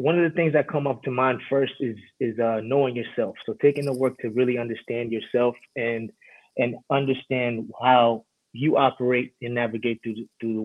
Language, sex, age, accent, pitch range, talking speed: English, male, 20-39, American, 115-135 Hz, 195 wpm